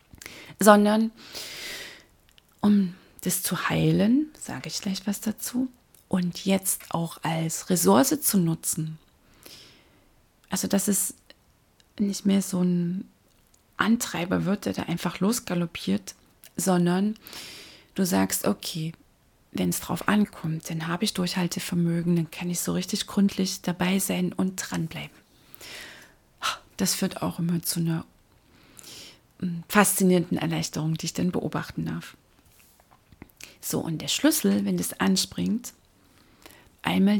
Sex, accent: female, German